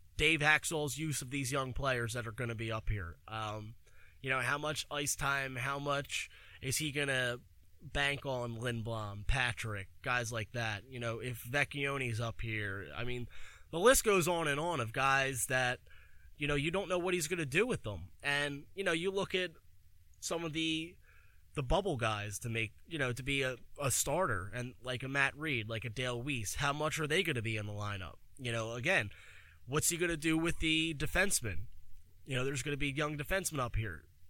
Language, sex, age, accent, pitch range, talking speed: English, male, 20-39, American, 110-155 Hz, 215 wpm